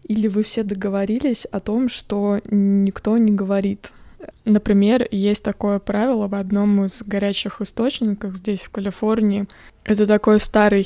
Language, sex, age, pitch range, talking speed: Russian, female, 20-39, 200-215 Hz, 140 wpm